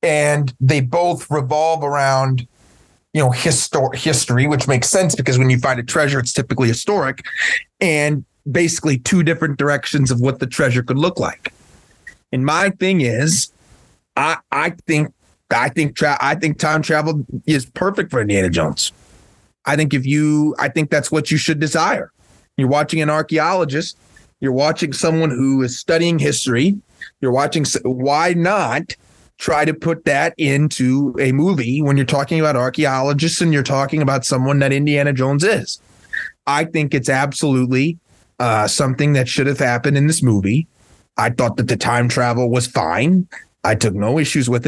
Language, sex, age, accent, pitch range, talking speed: English, male, 30-49, American, 125-155 Hz, 165 wpm